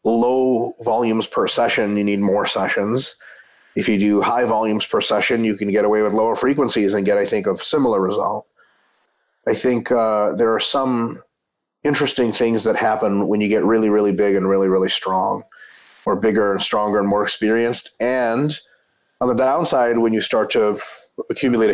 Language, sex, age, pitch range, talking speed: English, male, 30-49, 105-135 Hz, 180 wpm